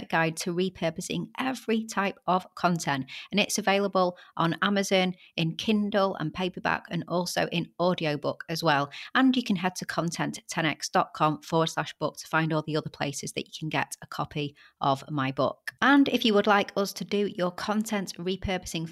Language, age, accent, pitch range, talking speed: English, 30-49, British, 165-205 Hz, 180 wpm